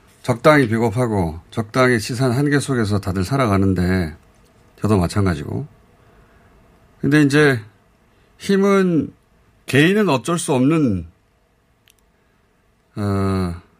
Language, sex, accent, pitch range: Korean, male, native, 95-140 Hz